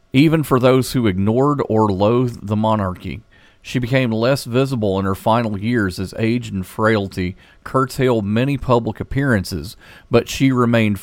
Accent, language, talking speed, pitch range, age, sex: American, English, 150 wpm, 105-130 Hz, 40-59, male